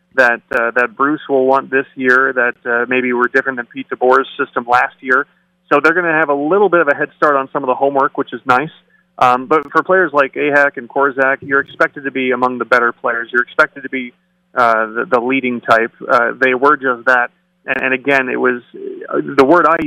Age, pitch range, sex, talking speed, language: 30-49, 125-160 Hz, male, 235 wpm, English